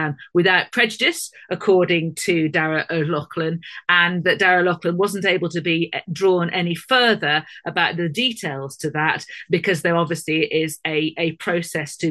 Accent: British